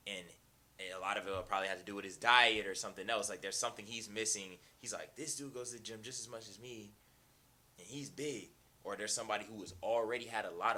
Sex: male